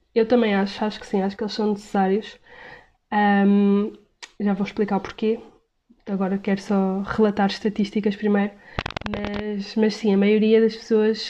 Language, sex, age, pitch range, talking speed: Portuguese, female, 20-39, 195-225 Hz, 155 wpm